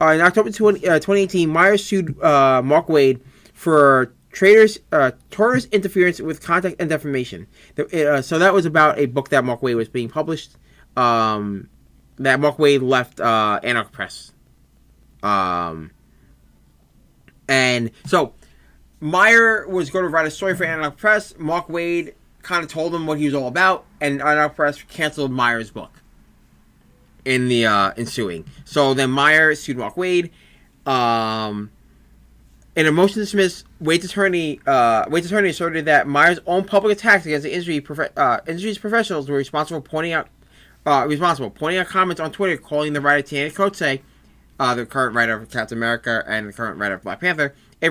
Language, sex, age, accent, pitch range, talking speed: English, male, 30-49, American, 120-175 Hz, 170 wpm